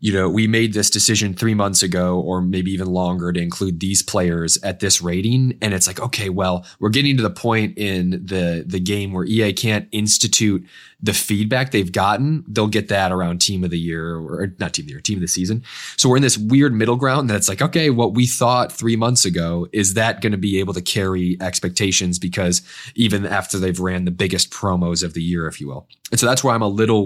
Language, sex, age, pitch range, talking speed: English, male, 20-39, 90-115 Hz, 240 wpm